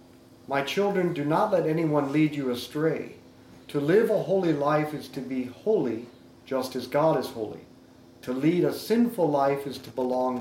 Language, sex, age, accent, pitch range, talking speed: English, male, 50-69, American, 120-165 Hz, 180 wpm